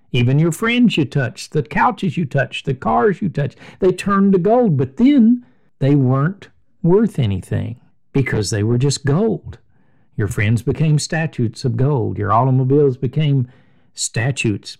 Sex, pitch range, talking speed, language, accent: male, 120-170 Hz, 155 wpm, English, American